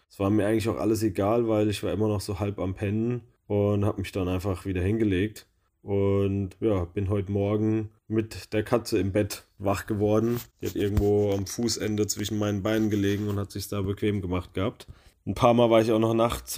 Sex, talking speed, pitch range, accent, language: male, 215 wpm, 95-115 Hz, German, German